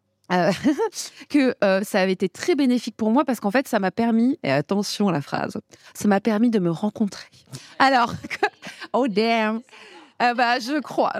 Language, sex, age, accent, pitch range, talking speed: French, female, 30-49, French, 185-240 Hz, 190 wpm